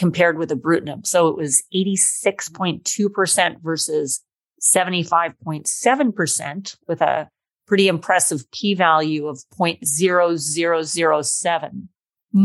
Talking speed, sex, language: 80 wpm, female, English